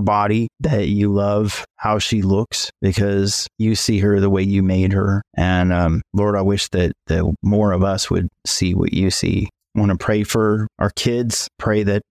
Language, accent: English, American